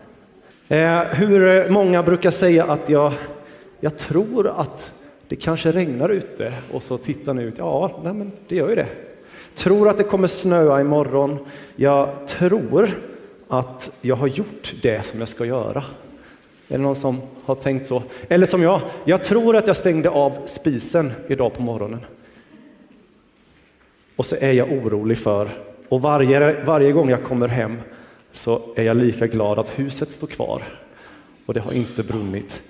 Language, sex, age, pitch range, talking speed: Swedish, male, 30-49, 125-175 Hz, 165 wpm